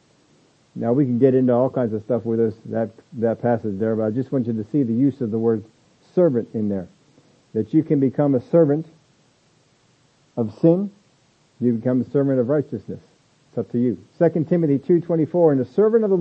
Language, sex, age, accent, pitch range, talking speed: English, male, 50-69, American, 135-170 Hz, 205 wpm